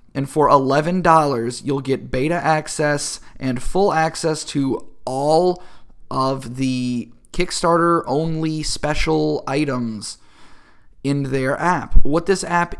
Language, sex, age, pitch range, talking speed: English, male, 20-39, 120-150 Hz, 110 wpm